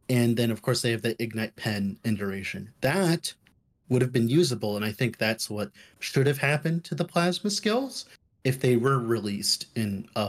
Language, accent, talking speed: English, American, 200 wpm